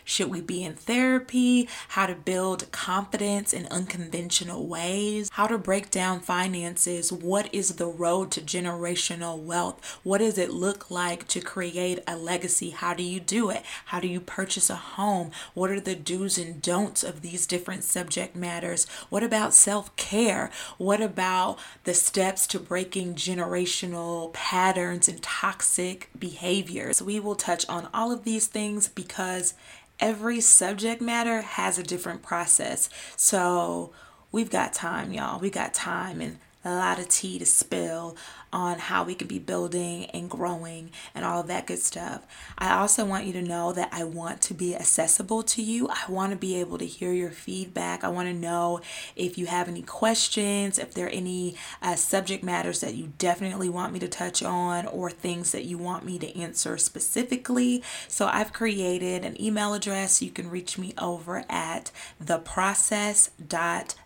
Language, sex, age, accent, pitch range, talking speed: English, female, 20-39, American, 175-200 Hz, 170 wpm